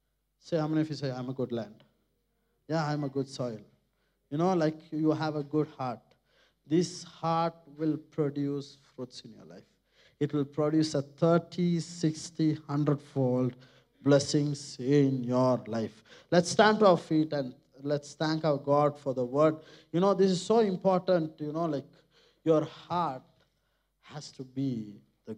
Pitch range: 145-205 Hz